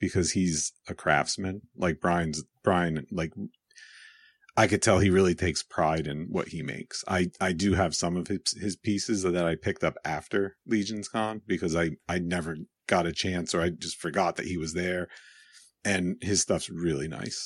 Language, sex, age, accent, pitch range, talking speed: English, male, 40-59, American, 85-100 Hz, 190 wpm